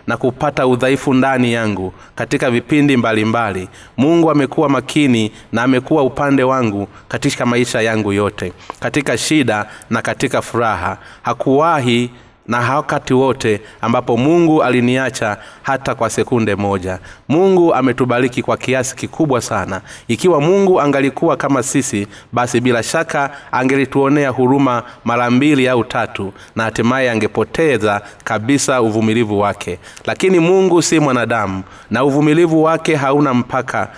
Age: 30-49